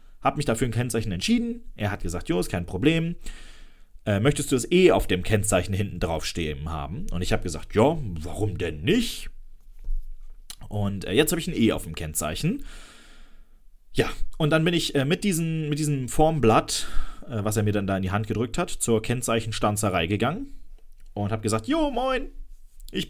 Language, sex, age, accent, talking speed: German, male, 30-49, German, 190 wpm